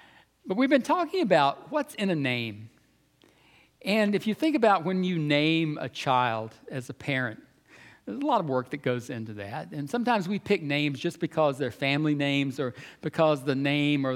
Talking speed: 195 wpm